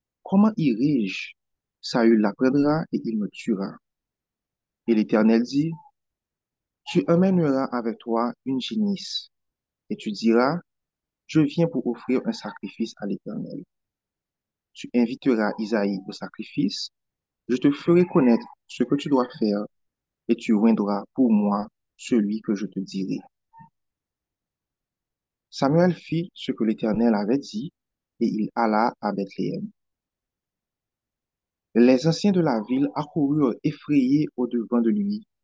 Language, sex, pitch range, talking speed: French, male, 110-170 Hz, 135 wpm